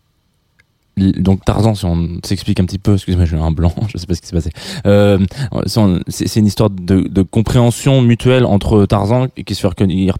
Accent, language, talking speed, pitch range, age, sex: French, French, 220 wpm, 90-120 Hz, 20-39, male